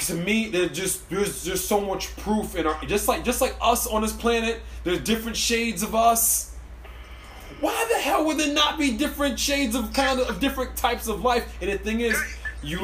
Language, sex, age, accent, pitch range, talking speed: English, male, 20-39, American, 165-240 Hz, 215 wpm